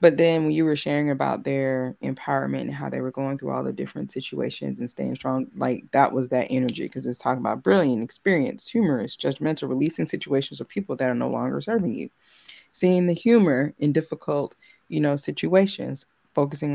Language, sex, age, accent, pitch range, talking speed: English, female, 20-39, American, 130-165 Hz, 195 wpm